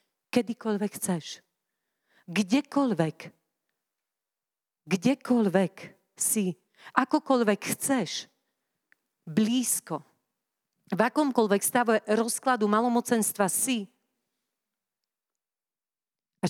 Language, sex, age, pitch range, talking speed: Slovak, female, 40-59, 175-235 Hz, 55 wpm